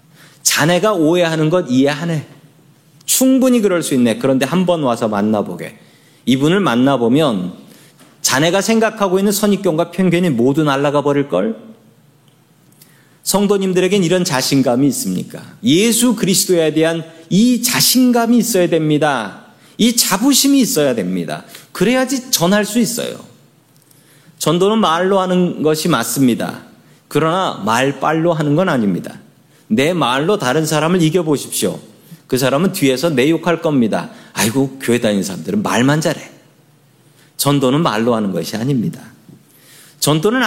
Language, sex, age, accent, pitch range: Korean, male, 40-59, native, 145-190 Hz